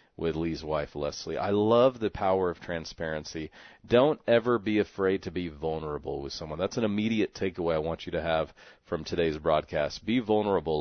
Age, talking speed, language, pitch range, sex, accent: 40-59, 185 wpm, English, 80-110 Hz, male, American